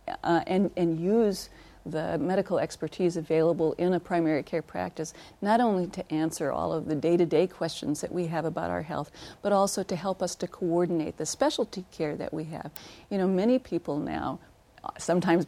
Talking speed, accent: 180 wpm, American